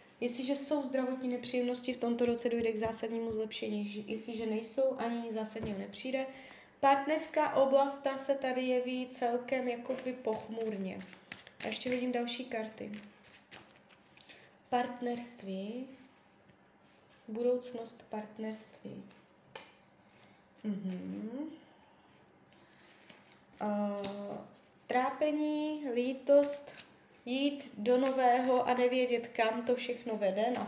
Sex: female